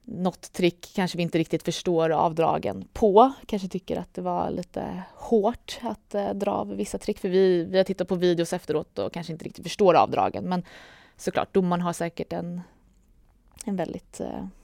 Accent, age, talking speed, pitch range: Swedish, 20-39, 175 wpm, 165-195 Hz